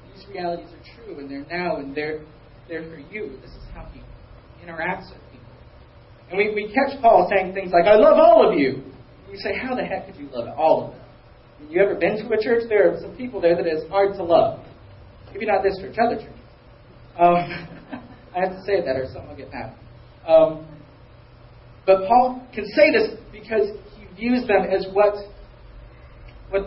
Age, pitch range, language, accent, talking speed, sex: 40-59, 145-200 Hz, English, American, 200 wpm, male